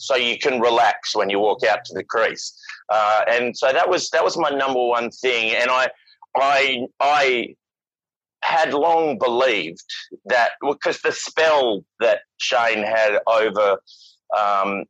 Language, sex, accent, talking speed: English, male, Australian, 155 wpm